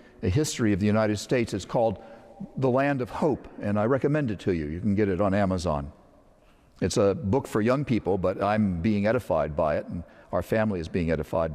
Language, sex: English, male